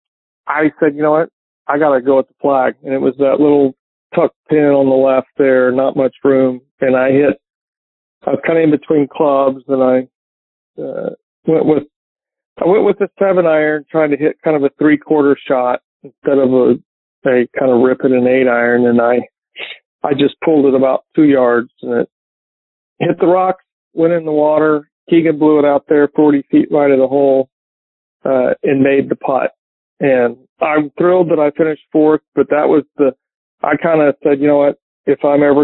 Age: 40-59